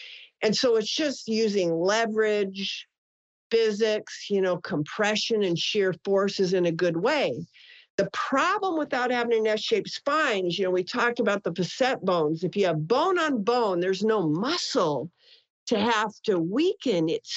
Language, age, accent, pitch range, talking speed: English, 50-69, American, 190-295 Hz, 165 wpm